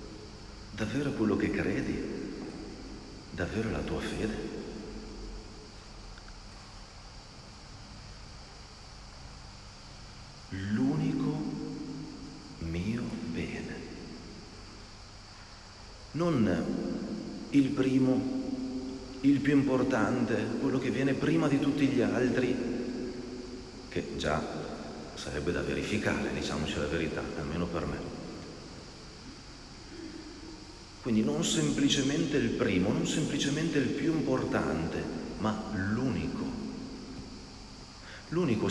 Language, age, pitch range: Italian, 50-69, 100-135 Hz